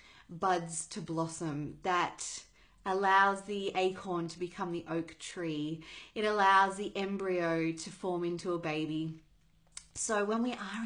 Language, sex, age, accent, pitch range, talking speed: English, female, 30-49, Australian, 165-205 Hz, 140 wpm